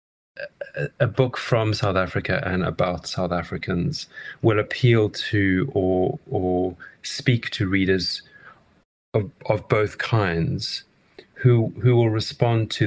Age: 30-49